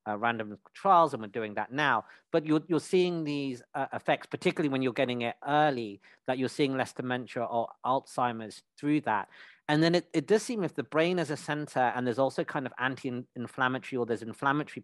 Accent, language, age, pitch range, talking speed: British, English, 40-59, 120-150 Hz, 205 wpm